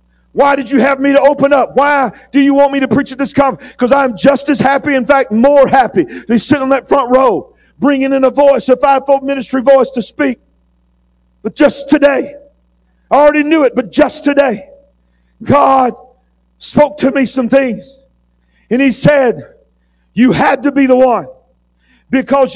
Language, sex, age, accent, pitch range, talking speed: English, male, 50-69, American, 245-290 Hz, 185 wpm